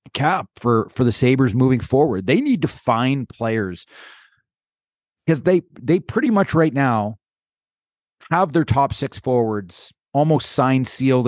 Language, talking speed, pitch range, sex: English, 145 wpm, 115-145 Hz, male